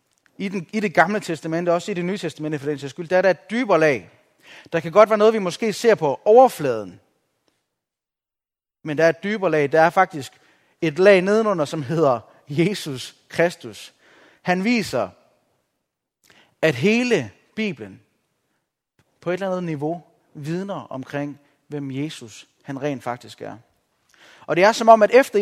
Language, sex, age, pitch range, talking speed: Danish, male, 30-49, 155-215 Hz, 170 wpm